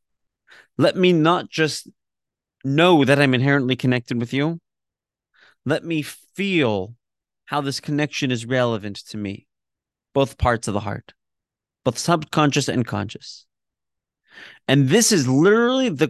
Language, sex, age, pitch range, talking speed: English, male, 30-49, 110-155 Hz, 130 wpm